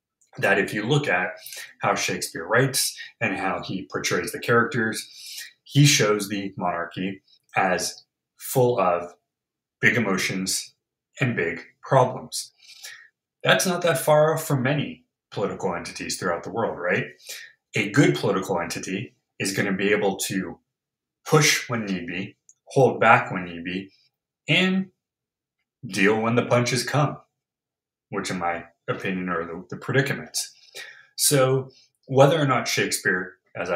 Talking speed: 140 wpm